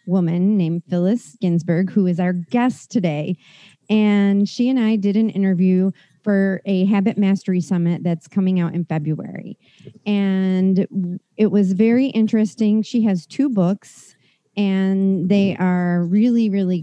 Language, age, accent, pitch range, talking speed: English, 40-59, American, 175-210 Hz, 145 wpm